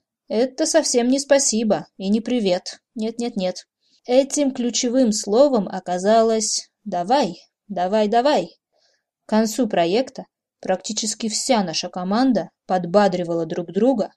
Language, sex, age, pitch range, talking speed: Russian, female, 20-39, 190-260 Hz, 115 wpm